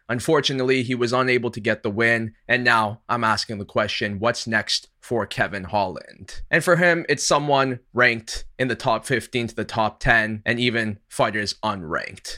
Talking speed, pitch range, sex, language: 180 wpm, 110-130 Hz, male, English